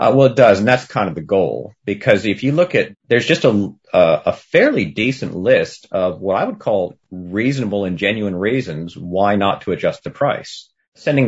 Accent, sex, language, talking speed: American, male, English, 205 wpm